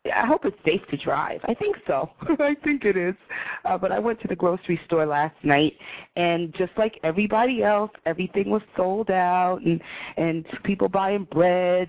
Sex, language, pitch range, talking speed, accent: female, English, 165-205 Hz, 185 wpm, American